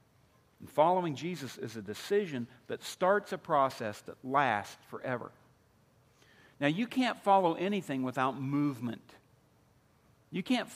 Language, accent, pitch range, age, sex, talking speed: English, American, 135-195 Hz, 50-69, male, 125 wpm